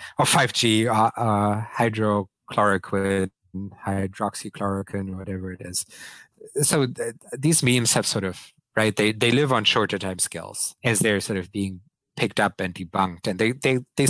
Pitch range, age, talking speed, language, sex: 95-115 Hz, 30-49, 160 wpm, English, male